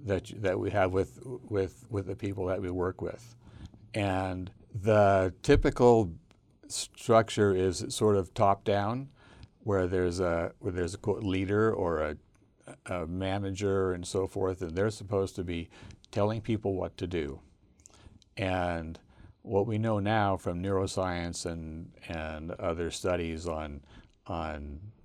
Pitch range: 90-110 Hz